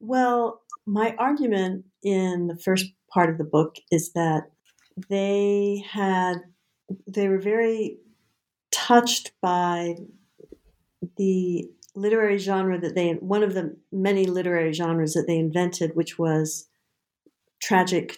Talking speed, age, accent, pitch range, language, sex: 120 wpm, 50-69, American, 175-220 Hz, English, female